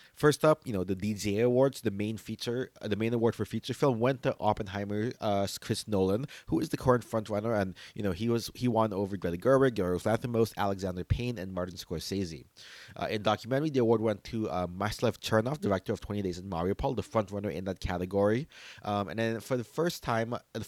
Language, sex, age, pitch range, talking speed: English, male, 30-49, 95-120 Hz, 210 wpm